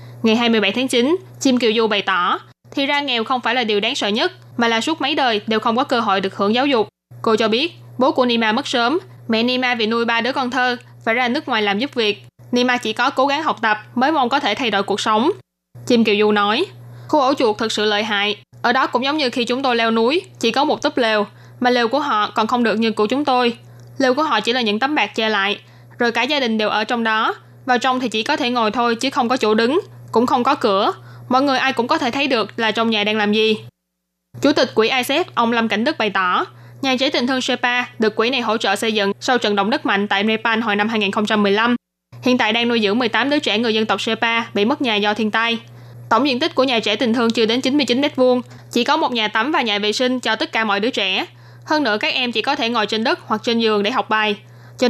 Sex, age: female, 10-29